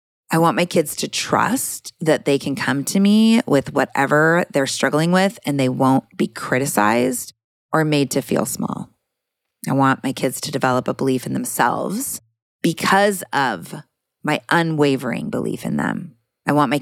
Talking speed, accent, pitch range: 170 wpm, American, 130-180 Hz